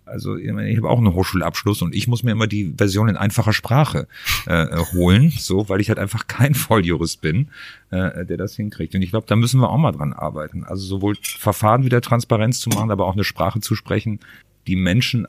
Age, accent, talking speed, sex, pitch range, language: 40-59, German, 215 wpm, male, 90-115 Hz, German